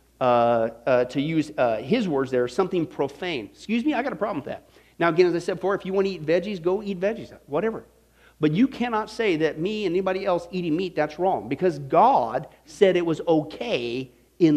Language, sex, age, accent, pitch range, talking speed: English, male, 40-59, American, 125-190 Hz, 225 wpm